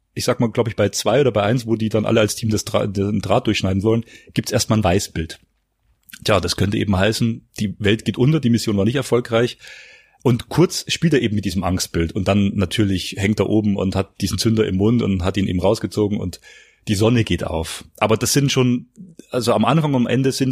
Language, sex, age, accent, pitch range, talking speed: German, male, 30-49, German, 100-125 Hz, 240 wpm